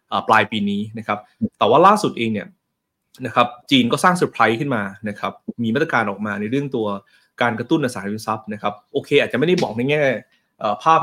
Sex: male